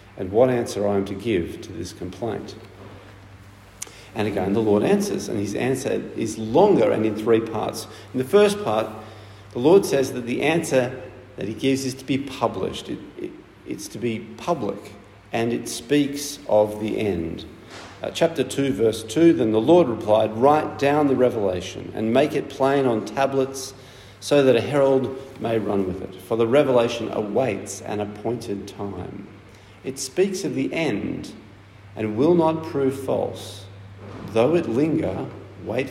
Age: 50-69